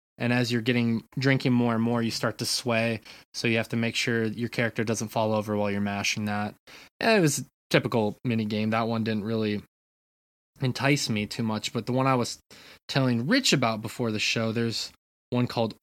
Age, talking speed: 20-39, 210 wpm